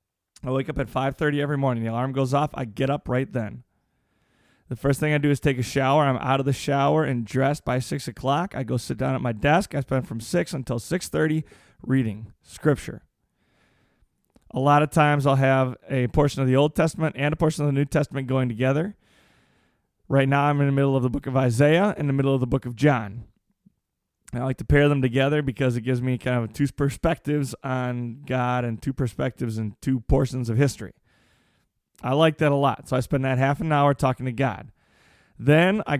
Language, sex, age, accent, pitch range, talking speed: English, male, 20-39, American, 130-150 Hz, 220 wpm